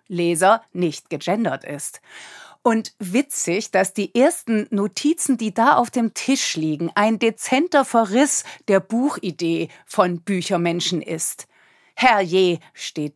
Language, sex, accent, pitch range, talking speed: German, female, German, 180-235 Hz, 120 wpm